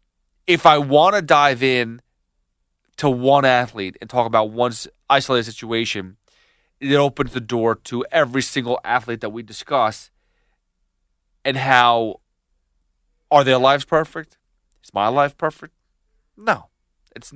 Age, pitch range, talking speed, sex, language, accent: 30-49, 105-135 Hz, 130 wpm, male, English, American